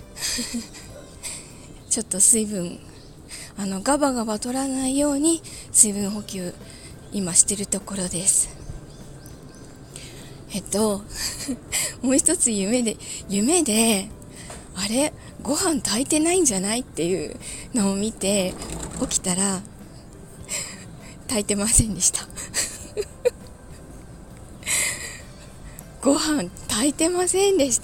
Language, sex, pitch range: Japanese, female, 195-275 Hz